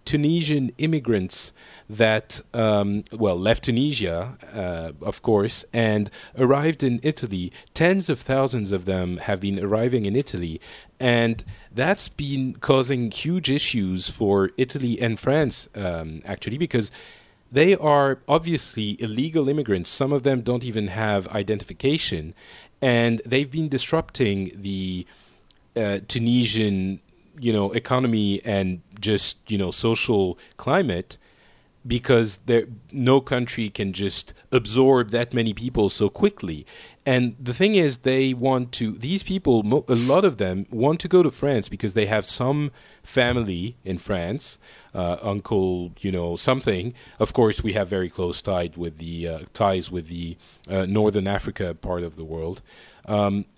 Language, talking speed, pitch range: English, 145 wpm, 100-130 Hz